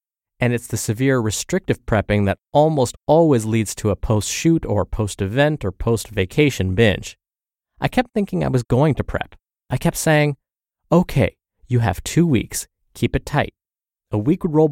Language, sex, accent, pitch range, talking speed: English, male, American, 110-155 Hz, 165 wpm